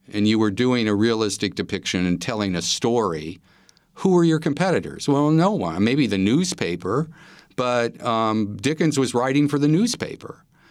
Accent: American